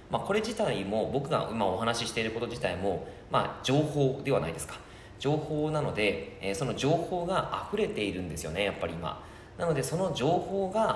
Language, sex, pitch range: Japanese, male, 95-155 Hz